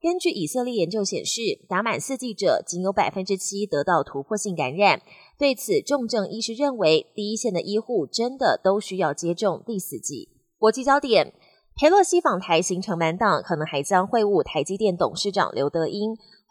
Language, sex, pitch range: Chinese, female, 175-245 Hz